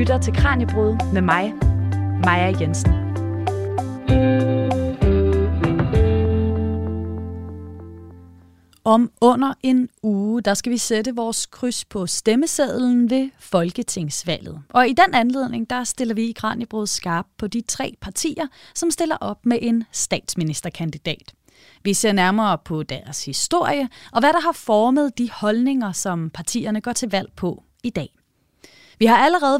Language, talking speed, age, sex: Danish, 130 wpm, 30-49, female